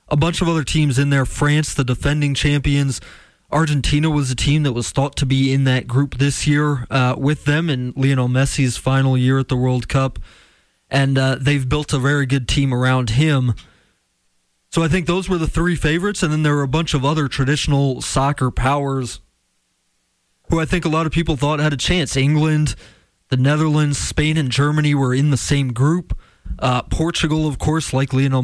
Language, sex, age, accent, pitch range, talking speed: English, male, 20-39, American, 125-150 Hz, 200 wpm